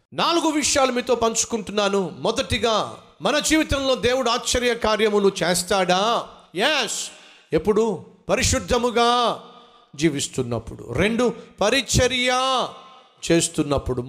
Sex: male